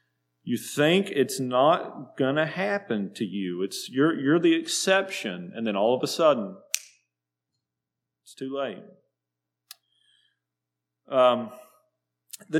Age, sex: 40-59, male